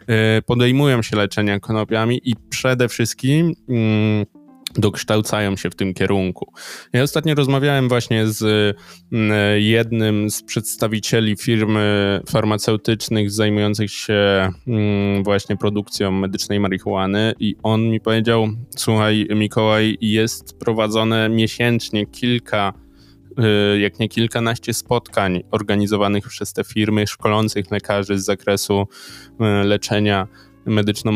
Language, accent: Polish, native